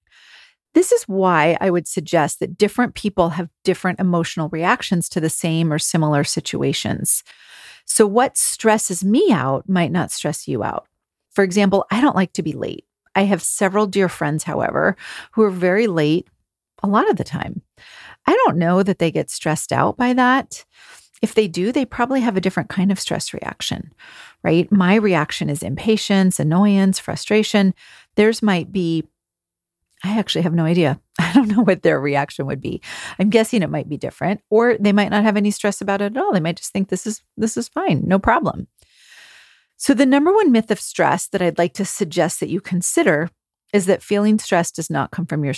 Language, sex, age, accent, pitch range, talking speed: English, female, 40-59, American, 170-210 Hz, 195 wpm